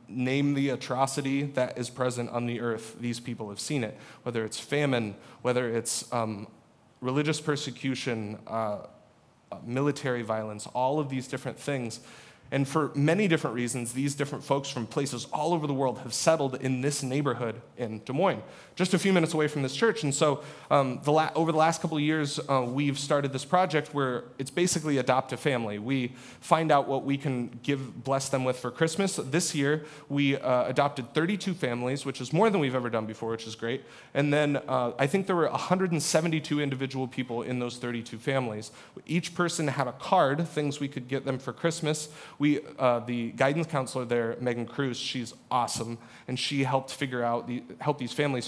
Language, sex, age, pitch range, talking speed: English, male, 30-49, 120-150 Hz, 195 wpm